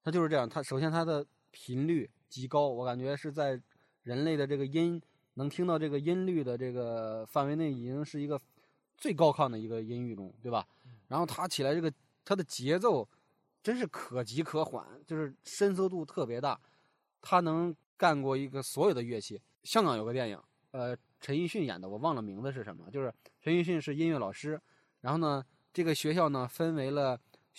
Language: Chinese